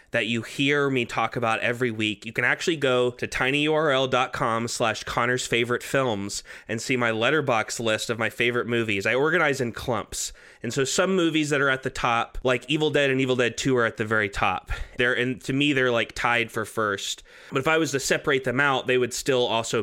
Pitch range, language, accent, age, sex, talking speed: 115-135 Hz, English, American, 20-39, male, 220 wpm